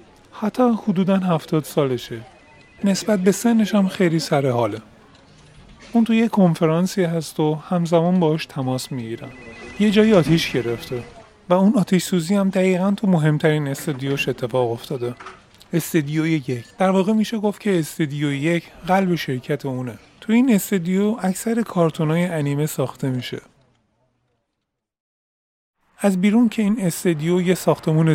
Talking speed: 130 wpm